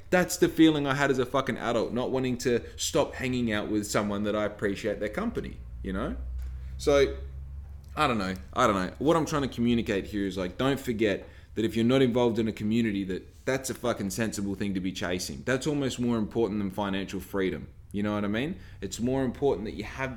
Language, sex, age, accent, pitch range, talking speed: English, male, 20-39, Australian, 100-130 Hz, 225 wpm